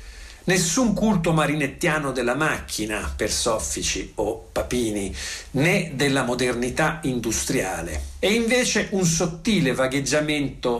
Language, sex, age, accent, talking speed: Italian, male, 50-69, native, 100 wpm